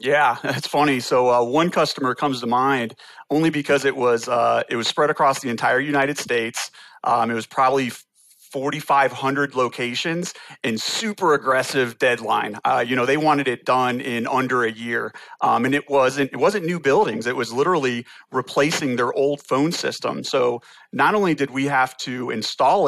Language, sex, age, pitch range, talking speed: English, male, 40-59, 125-150 Hz, 180 wpm